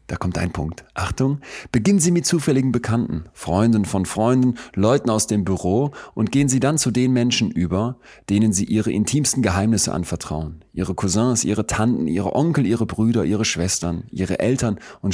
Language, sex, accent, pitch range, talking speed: German, male, German, 95-130 Hz, 175 wpm